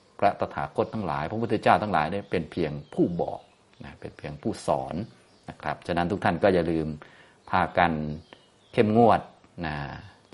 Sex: male